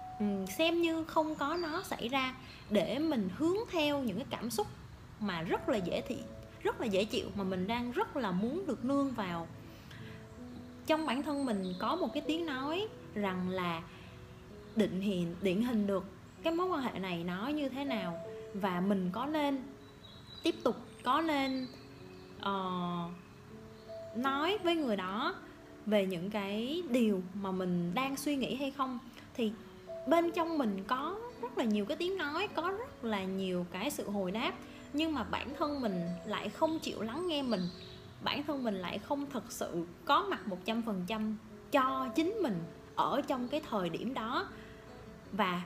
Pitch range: 195-295 Hz